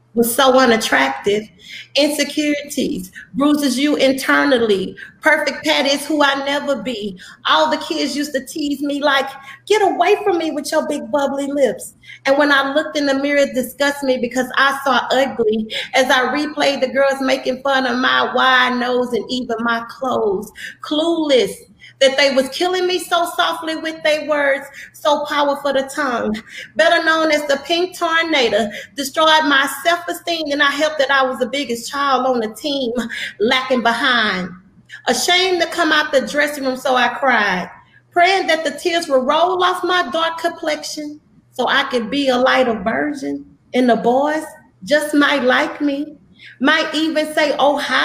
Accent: American